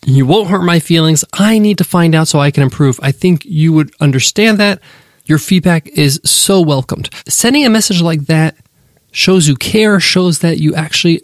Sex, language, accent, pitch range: male, English, American, 140-180 Hz